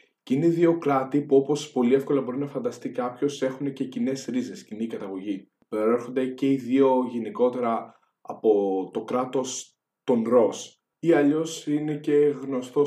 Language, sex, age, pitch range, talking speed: Greek, male, 20-39, 125-150 Hz, 155 wpm